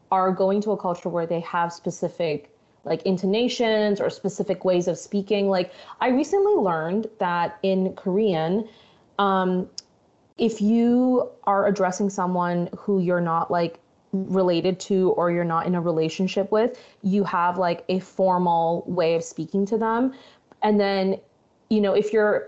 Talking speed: 155 wpm